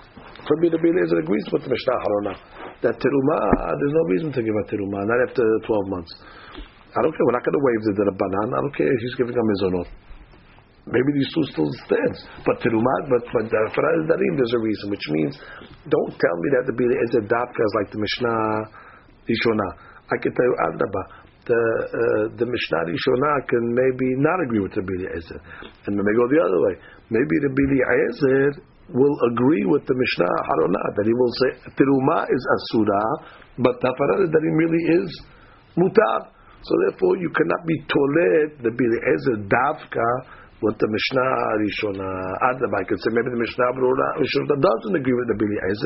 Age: 50-69